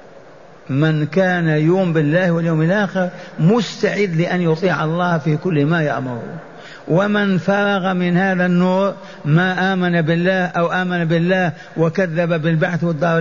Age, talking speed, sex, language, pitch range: 50-69, 125 wpm, male, Arabic, 155-185 Hz